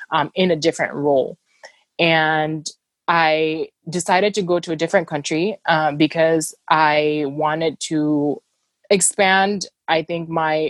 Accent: American